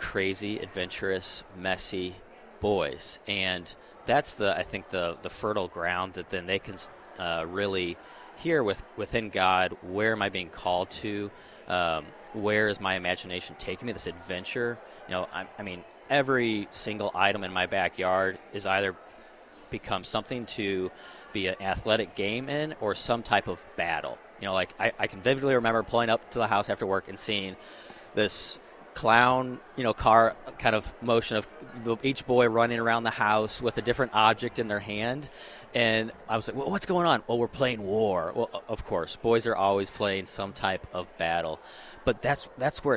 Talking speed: 180 wpm